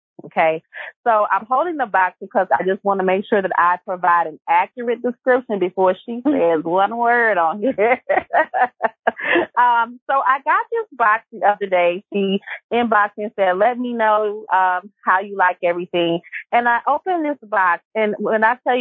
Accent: American